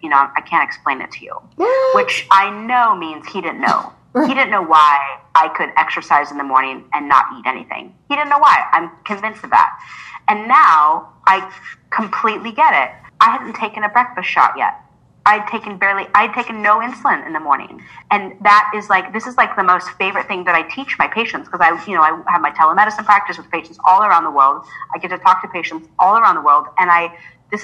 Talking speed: 225 wpm